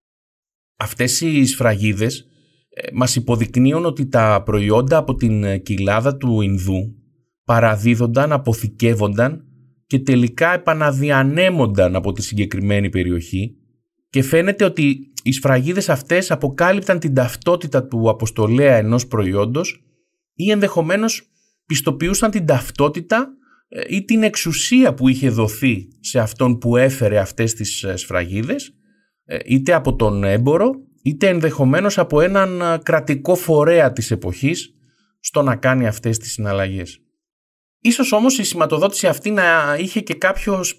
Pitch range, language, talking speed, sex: 115-170 Hz, Greek, 120 wpm, male